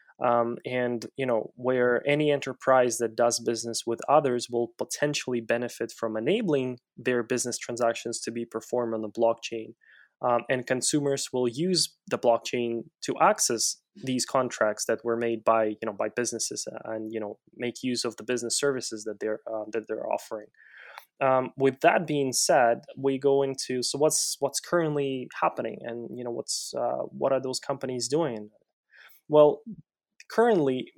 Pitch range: 115-140 Hz